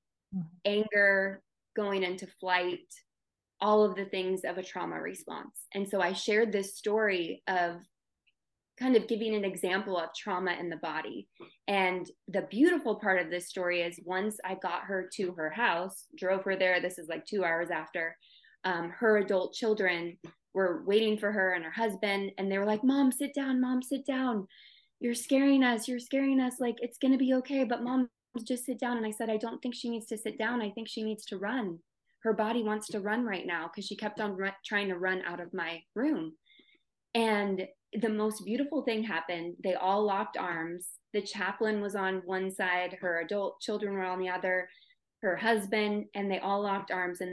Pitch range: 180-225 Hz